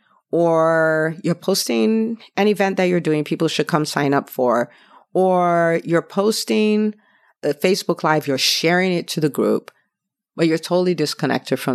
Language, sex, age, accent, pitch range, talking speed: English, female, 40-59, American, 150-205 Hz, 160 wpm